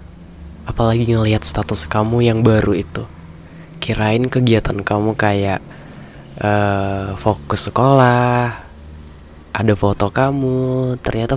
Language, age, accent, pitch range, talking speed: Indonesian, 20-39, native, 100-120 Hz, 95 wpm